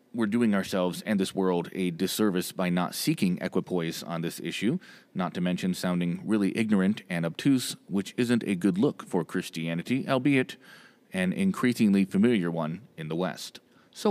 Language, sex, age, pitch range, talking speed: English, male, 30-49, 90-115 Hz, 165 wpm